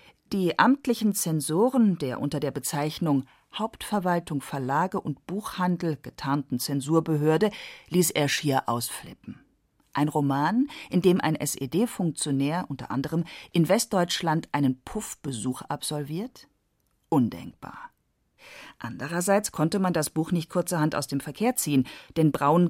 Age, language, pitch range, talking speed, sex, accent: 40-59, German, 145-185 Hz, 115 wpm, female, German